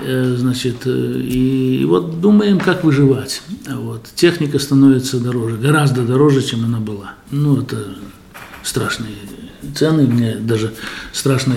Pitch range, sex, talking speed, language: 130-155 Hz, male, 115 wpm, Russian